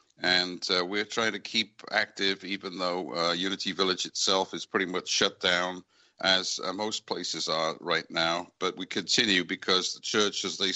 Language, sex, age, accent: English, male, 60-79, British